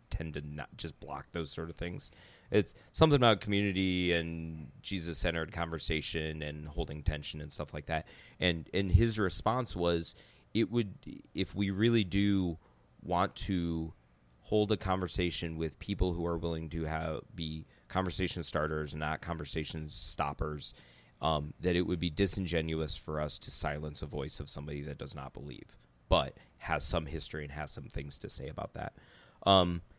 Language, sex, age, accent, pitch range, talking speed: English, male, 30-49, American, 75-90 Hz, 165 wpm